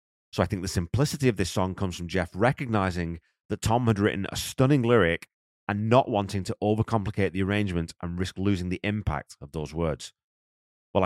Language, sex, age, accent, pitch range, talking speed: English, male, 30-49, British, 85-115 Hz, 190 wpm